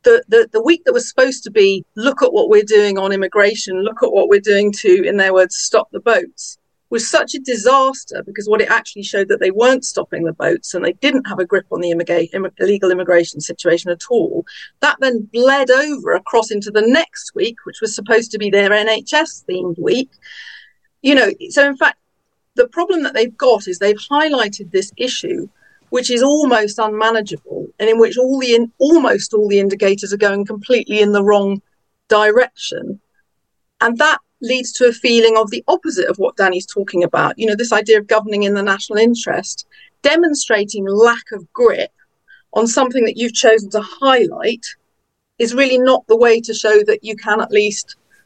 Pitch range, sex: 205-275 Hz, female